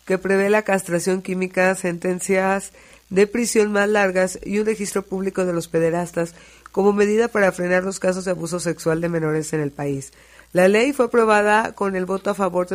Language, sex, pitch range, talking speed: Spanish, female, 170-205 Hz, 195 wpm